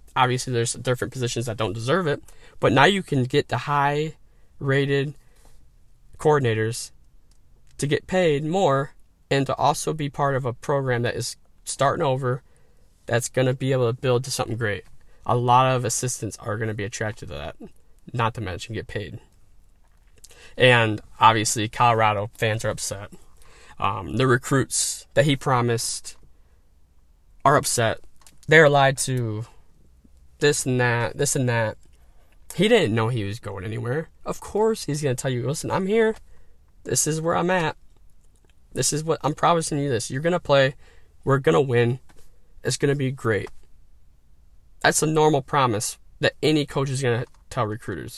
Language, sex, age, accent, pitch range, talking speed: English, male, 20-39, American, 100-140 Hz, 170 wpm